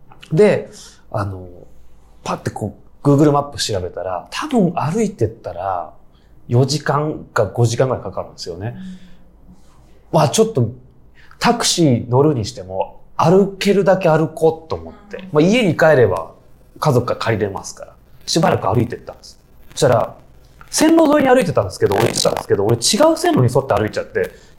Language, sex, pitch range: Japanese, male, 120-195 Hz